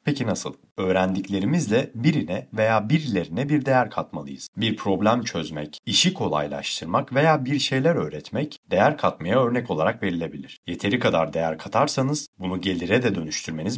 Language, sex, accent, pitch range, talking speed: Turkish, male, native, 80-130 Hz, 135 wpm